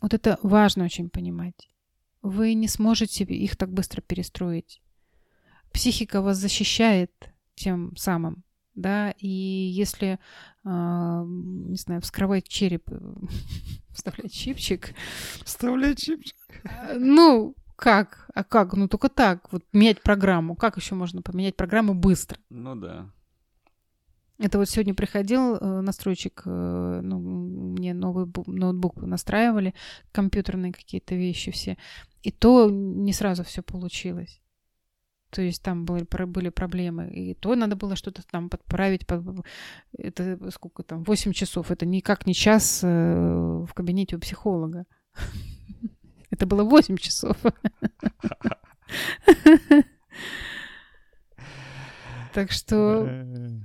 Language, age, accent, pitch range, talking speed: Russian, 30-49, native, 175-210 Hz, 110 wpm